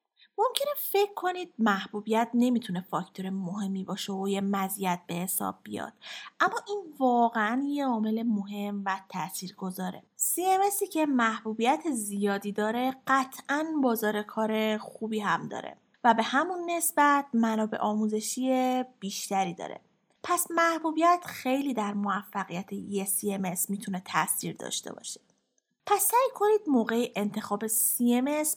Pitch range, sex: 200-290 Hz, female